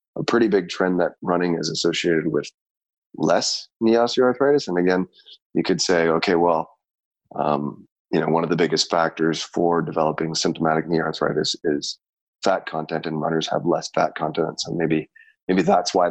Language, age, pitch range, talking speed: English, 20-39, 85-100 Hz, 170 wpm